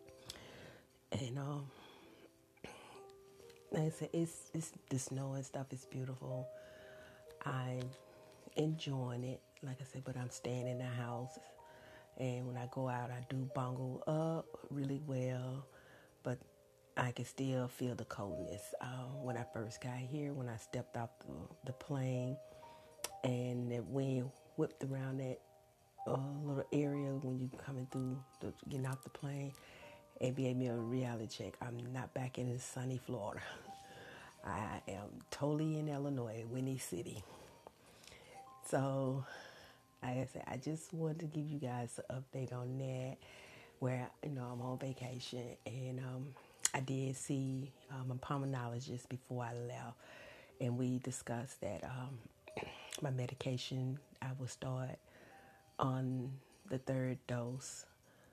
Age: 40-59